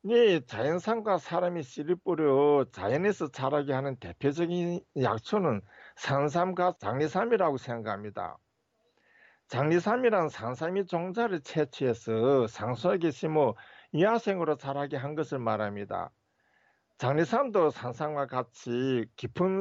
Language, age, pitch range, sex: Korean, 50-69, 125-185 Hz, male